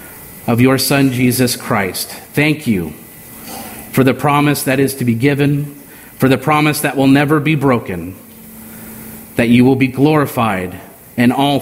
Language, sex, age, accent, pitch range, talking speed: English, male, 40-59, American, 120-185 Hz, 155 wpm